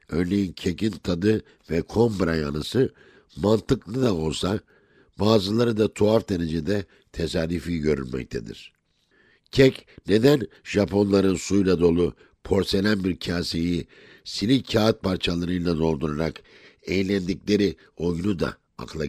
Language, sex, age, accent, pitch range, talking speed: Turkish, male, 60-79, native, 85-110 Hz, 95 wpm